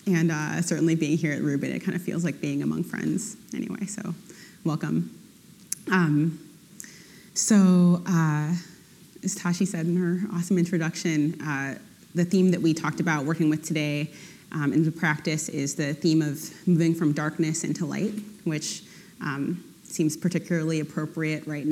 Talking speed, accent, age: 155 wpm, American, 30-49